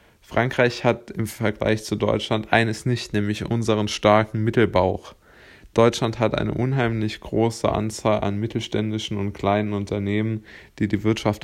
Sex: male